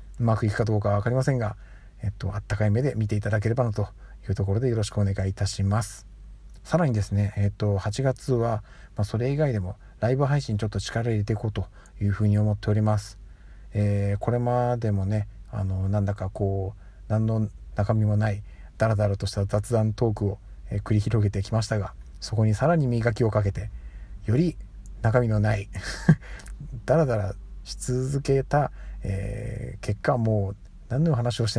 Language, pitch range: Japanese, 100-120 Hz